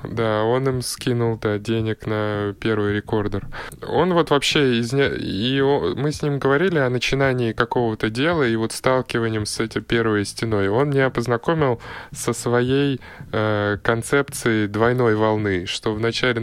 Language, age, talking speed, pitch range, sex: Russian, 20-39, 145 wpm, 110-135 Hz, male